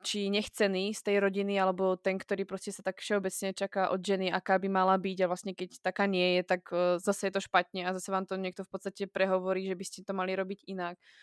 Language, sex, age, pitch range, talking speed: Slovak, female, 20-39, 180-195 Hz, 235 wpm